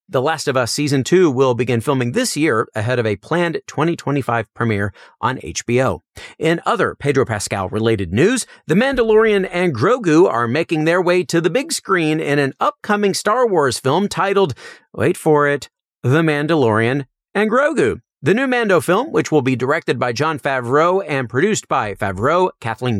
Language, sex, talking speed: English, male, 170 wpm